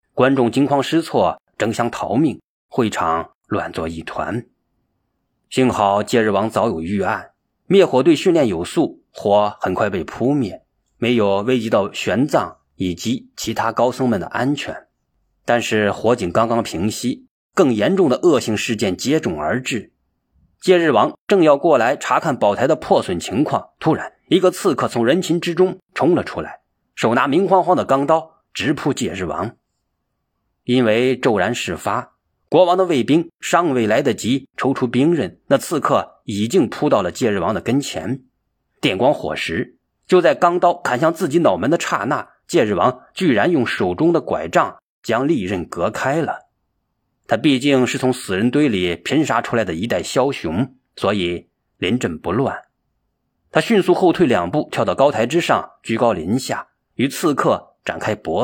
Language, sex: Chinese, male